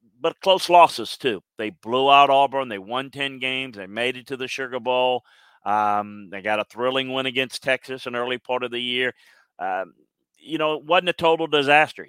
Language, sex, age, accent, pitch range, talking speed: English, male, 40-59, American, 115-135 Hz, 210 wpm